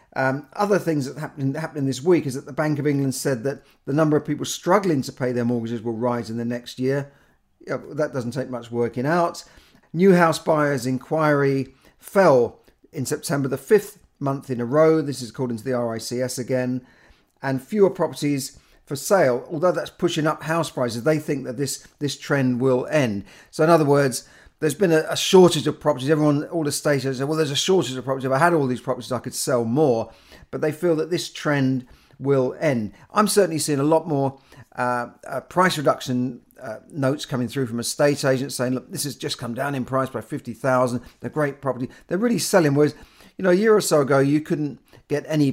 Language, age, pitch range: English, 40-59, 125-155 Hz